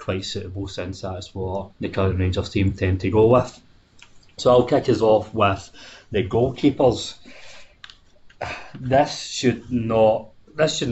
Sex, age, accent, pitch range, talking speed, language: male, 30-49, British, 100-125 Hz, 145 wpm, English